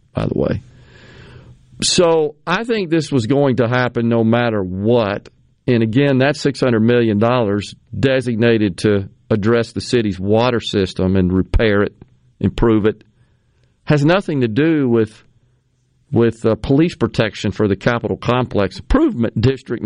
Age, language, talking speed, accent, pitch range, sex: 50-69, English, 140 wpm, American, 115-155 Hz, male